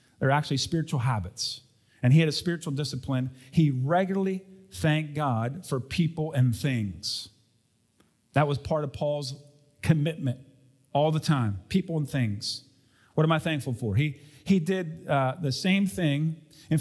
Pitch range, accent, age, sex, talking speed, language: 140-180 Hz, American, 40-59, male, 155 wpm, English